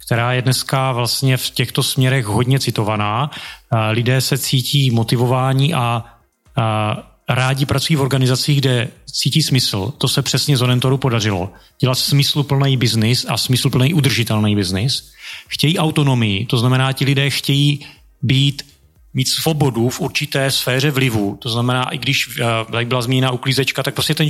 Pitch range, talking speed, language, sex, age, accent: 120-140 Hz, 145 wpm, Czech, male, 30-49, native